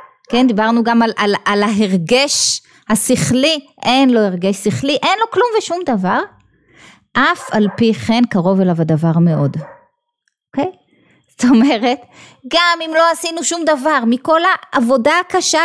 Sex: female